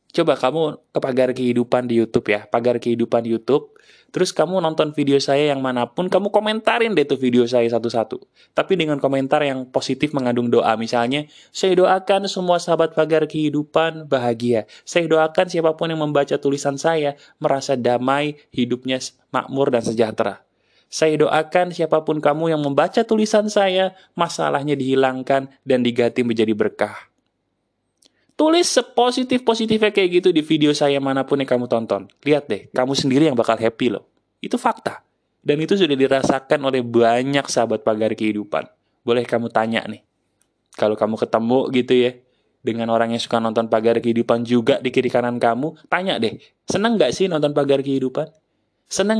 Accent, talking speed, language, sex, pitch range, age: native, 155 wpm, Indonesian, male, 120-170 Hz, 20-39